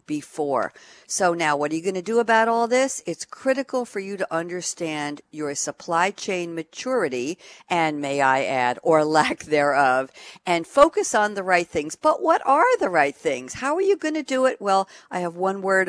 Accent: American